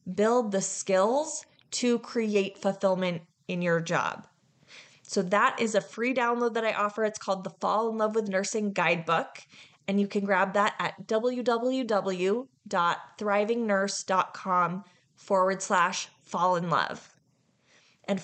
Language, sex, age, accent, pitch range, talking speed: English, female, 20-39, American, 180-220 Hz, 130 wpm